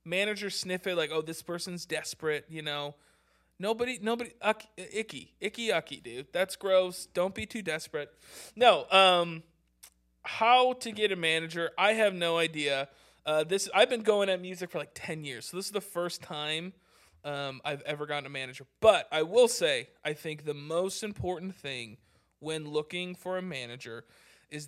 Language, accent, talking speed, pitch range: English, American, 175 wpm, 145-190 Hz